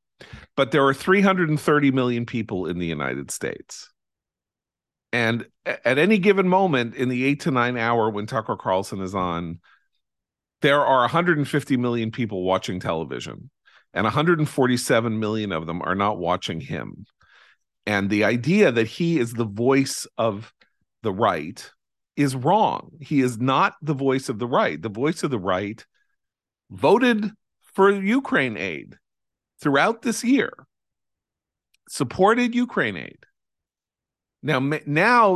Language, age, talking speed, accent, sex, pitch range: English, 40-59, 135 wpm, American, male, 105-170 Hz